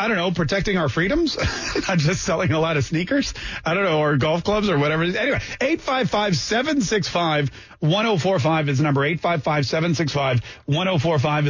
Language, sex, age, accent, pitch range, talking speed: English, male, 30-49, American, 140-175 Hz, 140 wpm